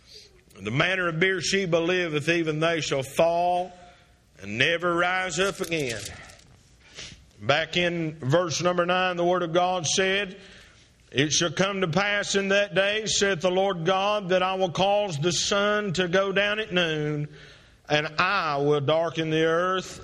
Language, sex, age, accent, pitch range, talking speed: English, male, 50-69, American, 165-210 Hz, 160 wpm